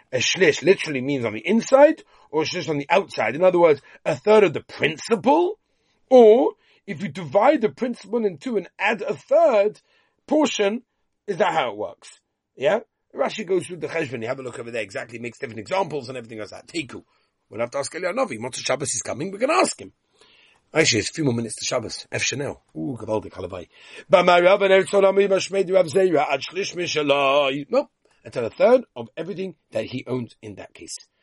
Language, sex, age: English, male, 40-59